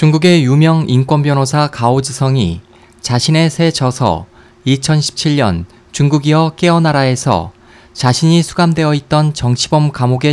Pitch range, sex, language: 120-160 Hz, male, Korean